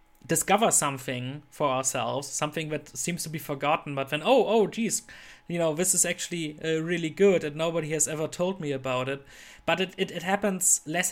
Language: English